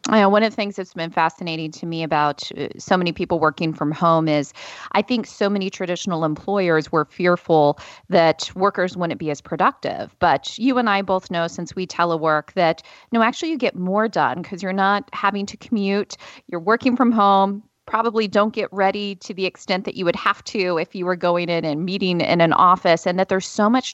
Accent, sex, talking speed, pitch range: American, female, 215 wpm, 170-205 Hz